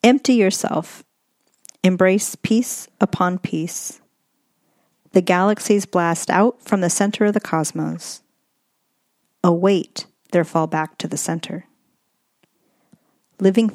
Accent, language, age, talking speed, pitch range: American, English, 40-59, 105 wpm, 160-210 Hz